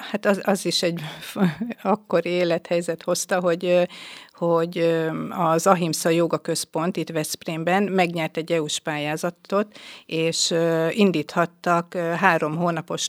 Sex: female